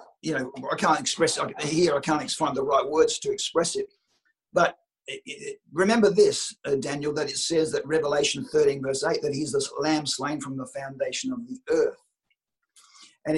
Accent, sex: Australian, male